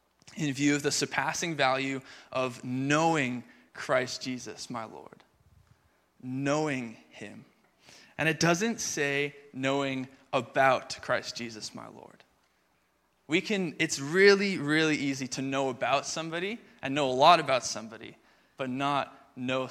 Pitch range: 130-155 Hz